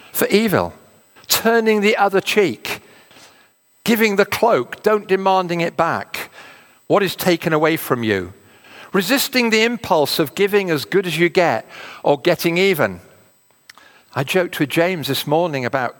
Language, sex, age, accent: English, male, 50-69, British